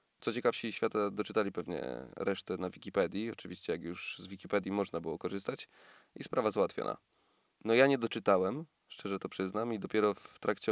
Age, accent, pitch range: 20-39, native, 95-110 Hz